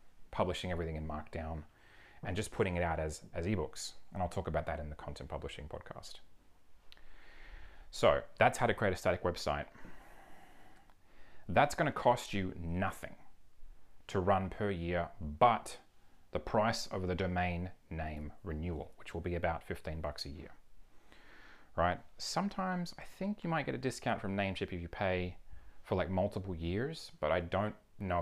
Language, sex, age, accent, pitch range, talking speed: English, male, 30-49, Australian, 80-95 Hz, 165 wpm